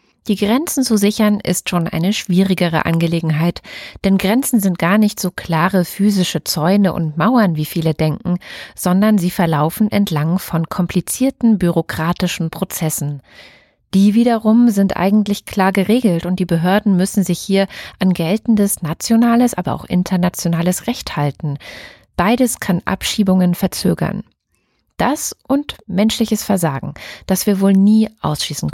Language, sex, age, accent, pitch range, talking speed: German, female, 30-49, German, 170-215 Hz, 135 wpm